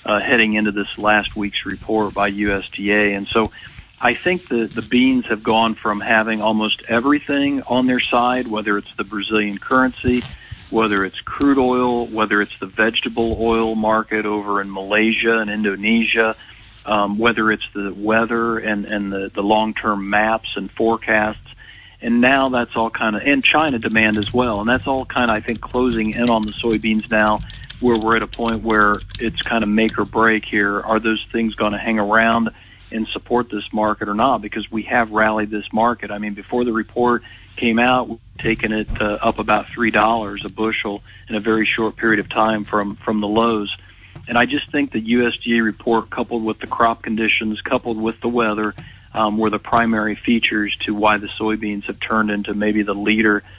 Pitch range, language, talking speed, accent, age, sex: 105-115 Hz, English, 195 wpm, American, 50-69, male